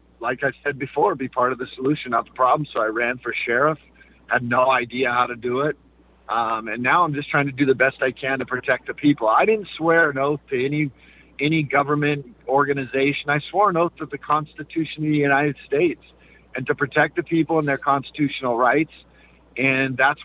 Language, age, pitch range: English, 50-69, 130-160 Hz